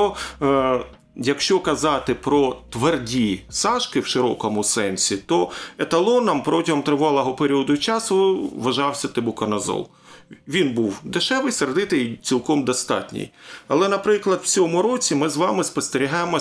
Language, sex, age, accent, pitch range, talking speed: Ukrainian, male, 40-59, native, 125-195 Hz, 115 wpm